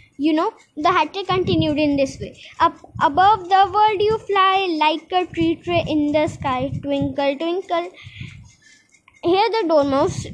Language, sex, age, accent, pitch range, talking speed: Hindi, female, 20-39, native, 320-420 Hz, 150 wpm